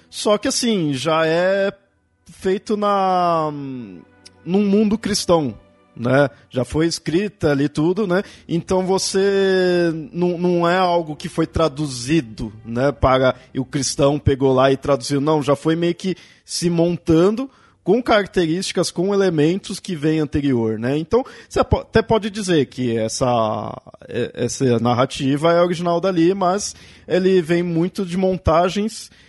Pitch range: 135-180 Hz